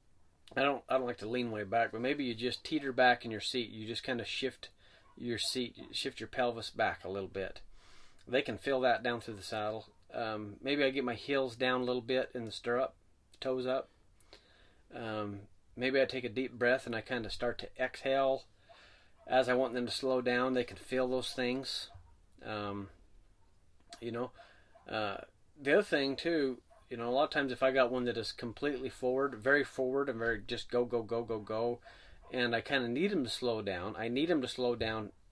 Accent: American